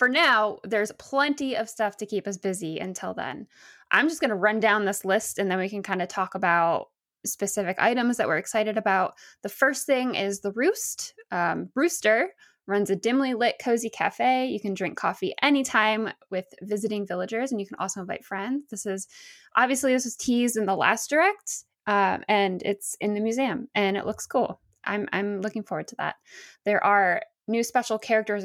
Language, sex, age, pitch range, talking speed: English, female, 10-29, 195-245 Hz, 195 wpm